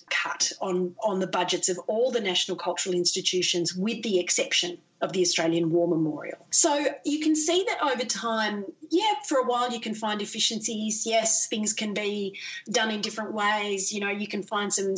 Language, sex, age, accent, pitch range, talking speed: English, female, 30-49, Australian, 180-225 Hz, 190 wpm